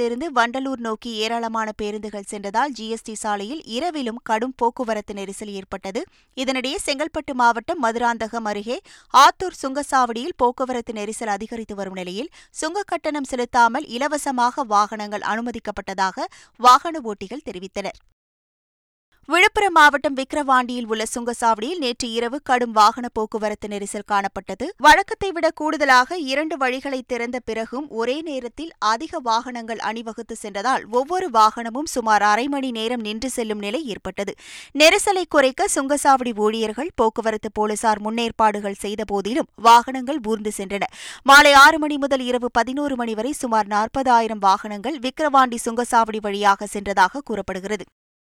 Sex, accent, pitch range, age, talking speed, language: female, native, 215-275 Hz, 20-39, 120 wpm, Tamil